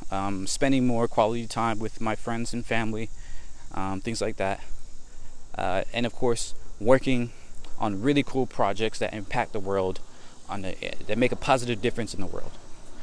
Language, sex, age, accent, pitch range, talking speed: English, male, 20-39, American, 95-120 Hz, 170 wpm